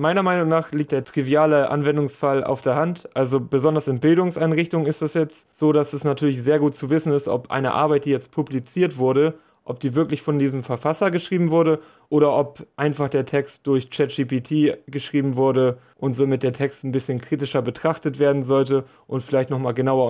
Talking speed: 190 wpm